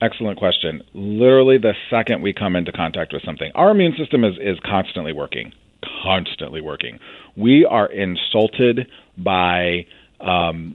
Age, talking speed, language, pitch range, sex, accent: 40-59, 140 wpm, English, 100-140 Hz, male, American